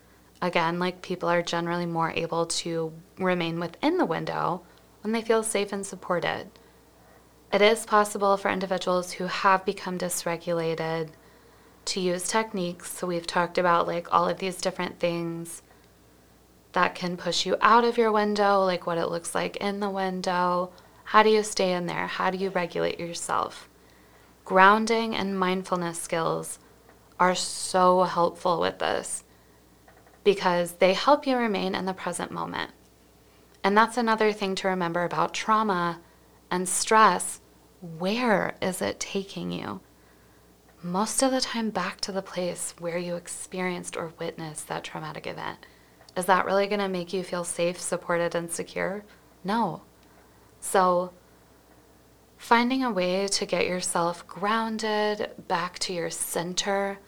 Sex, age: female, 20-39